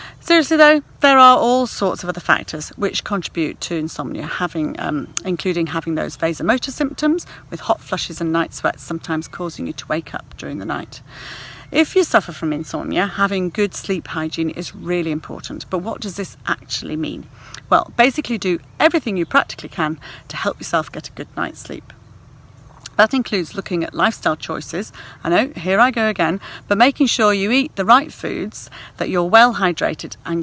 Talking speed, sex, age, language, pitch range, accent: 180 wpm, female, 40-59, English, 165-230 Hz, British